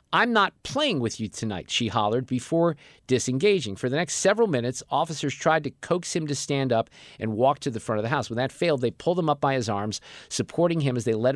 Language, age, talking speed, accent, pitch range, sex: English, 50-69, 245 wpm, American, 120-150 Hz, male